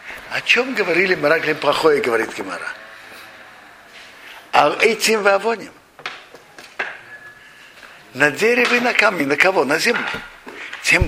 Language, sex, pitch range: Russian, male, 160-220 Hz